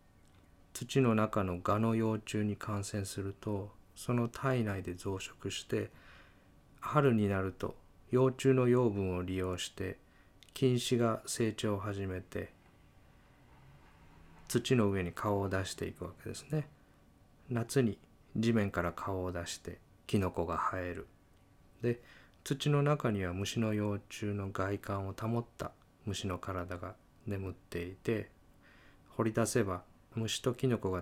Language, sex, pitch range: Japanese, male, 90-115 Hz